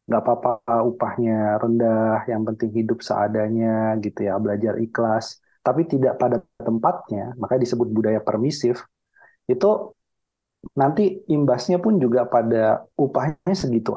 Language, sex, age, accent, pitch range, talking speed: Indonesian, male, 30-49, native, 110-130 Hz, 120 wpm